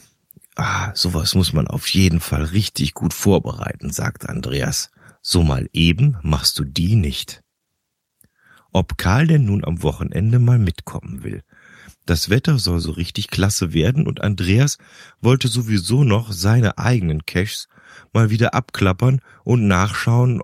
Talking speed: 140 wpm